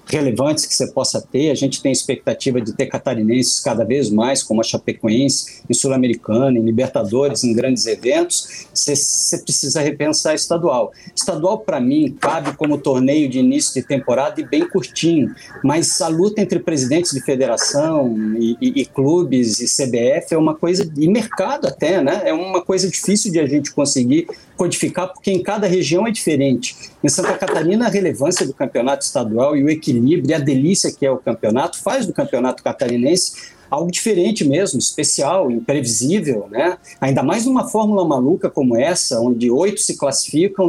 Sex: male